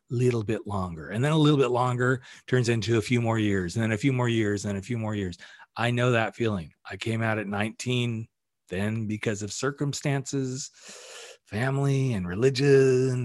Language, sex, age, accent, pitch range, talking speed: English, male, 40-59, American, 105-130 Hz, 190 wpm